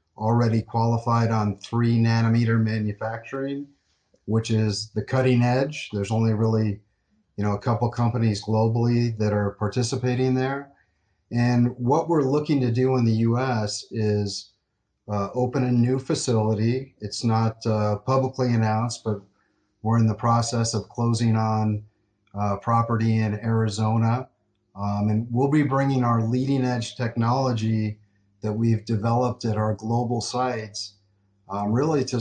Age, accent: 40-59, American